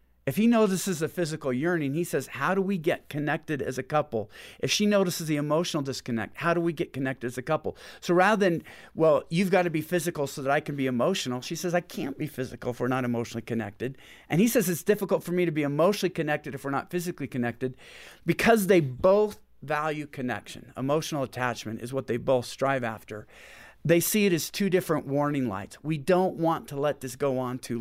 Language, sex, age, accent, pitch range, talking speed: English, male, 50-69, American, 125-170 Hz, 220 wpm